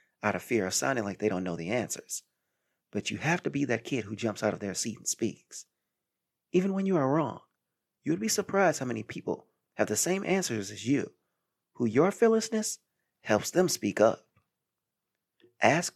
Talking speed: 195 wpm